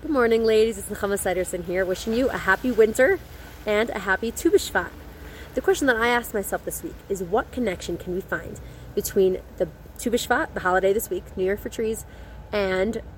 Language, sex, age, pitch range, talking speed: English, female, 20-39, 185-250 Hz, 200 wpm